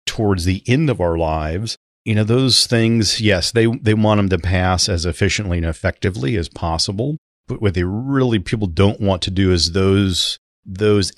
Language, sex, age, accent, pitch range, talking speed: English, male, 40-59, American, 85-105 Hz, 190 wpm